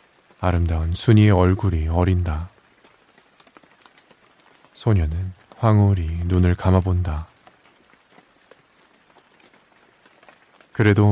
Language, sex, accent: Korean, male, native